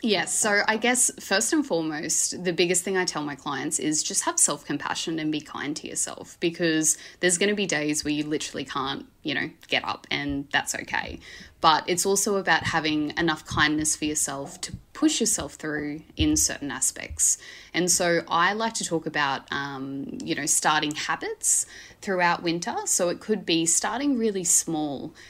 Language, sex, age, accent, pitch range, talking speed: English, female, 20-39, Australian, 150-185 Hz, 185 wpm